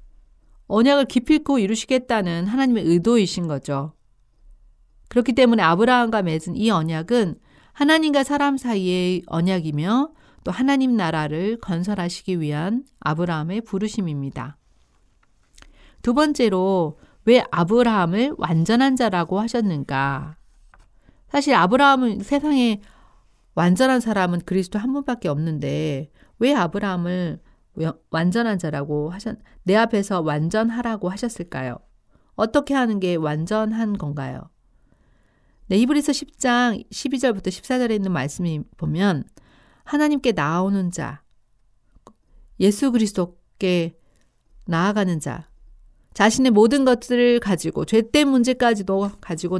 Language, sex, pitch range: Korean, female, 165-240 Hz